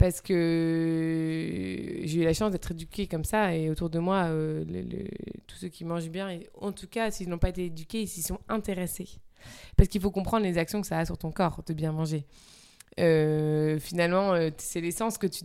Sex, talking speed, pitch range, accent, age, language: female, 200 wpm, 165-200 Hz, French, 20-39, French